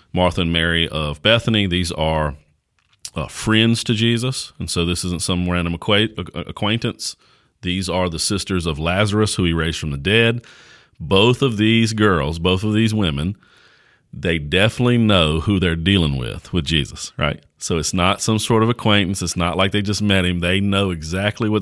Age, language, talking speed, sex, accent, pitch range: 40-59, English, 185 wpm, male, American, 85-100 Hz